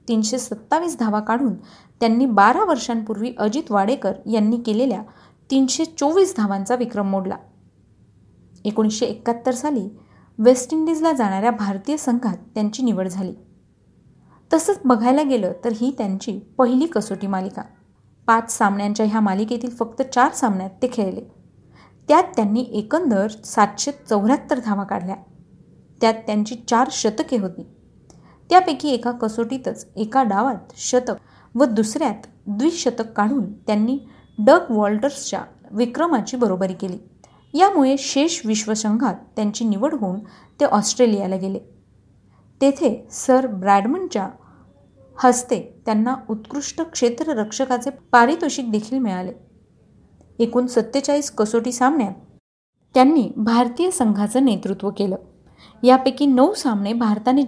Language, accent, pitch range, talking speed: Marathi, native, 210-265 Hz, 110 wpm